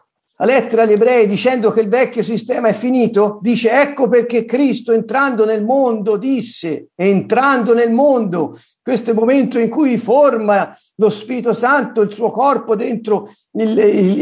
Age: 50-69